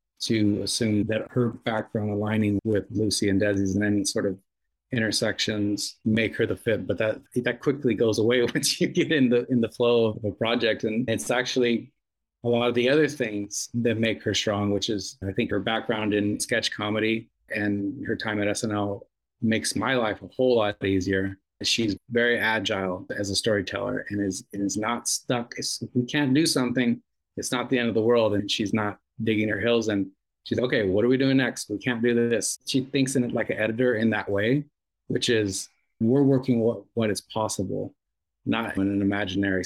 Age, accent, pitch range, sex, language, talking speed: 30-49, American, 105-125 Hz, male, English, 205 wpm